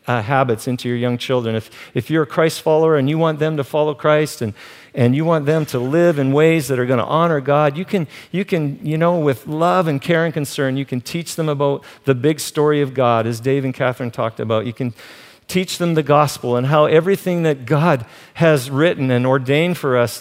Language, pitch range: English, 130-175 Hz